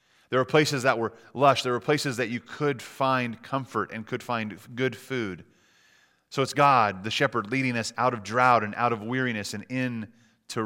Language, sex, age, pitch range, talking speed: English, male, 30-49, 115-145 Hz, 205 wpm